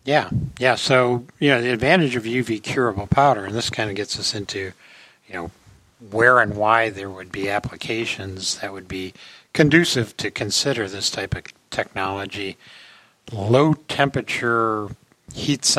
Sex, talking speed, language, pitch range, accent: male, 150 wpm, English, 95-120 Hz, American